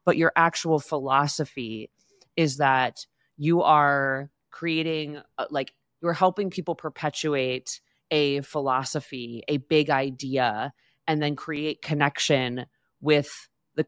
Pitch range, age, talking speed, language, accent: 140-165 Hz, 30-49, 110 wpm, English, American